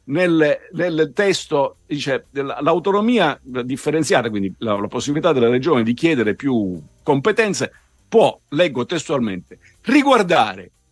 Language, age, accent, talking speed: Italian, 50-69, native, 110 wpm